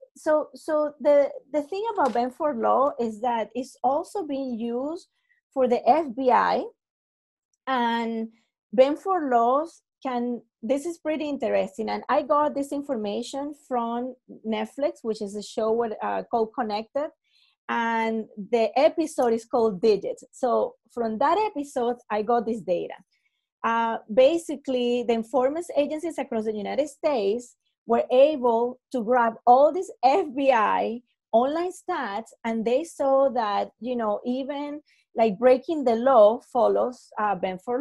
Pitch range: 230-290 Hz